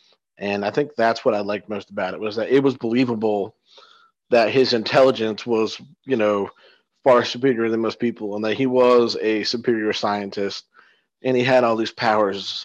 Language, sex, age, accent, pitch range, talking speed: English, male, 30-49, American, 100-120 Hz, 185 wpm